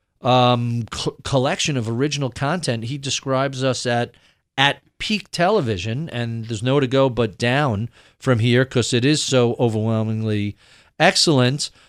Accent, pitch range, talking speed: American, 125-155 Hz, 140 wpm